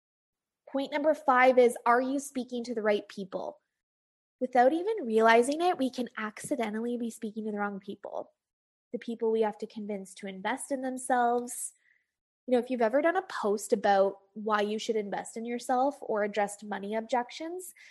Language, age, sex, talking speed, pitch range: English, 20-39, female, 180 wpm, 210-255 Hz